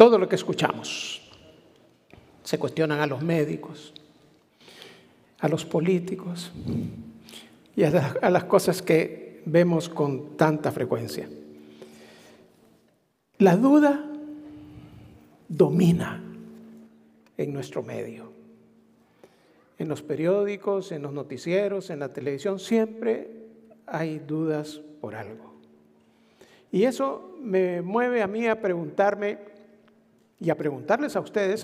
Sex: male